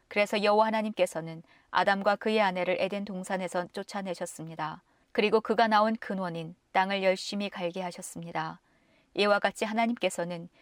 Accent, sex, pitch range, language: native, female, 170-210 Hz, Korean